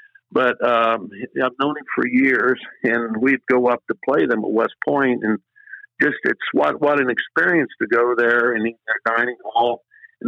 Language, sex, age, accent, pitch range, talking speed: English, male, 50-69, American, 120-150 Hz, 195 wpm